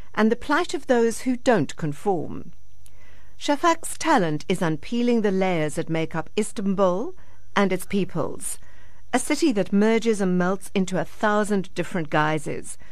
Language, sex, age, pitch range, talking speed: English, female, 50-69, 150-210 Hz, 150 wpm